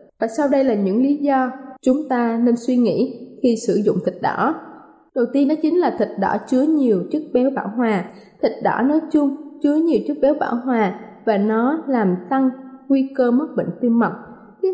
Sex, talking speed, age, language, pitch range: female, 210 wpm, 20-39, Vietnamese, 230-285 Hz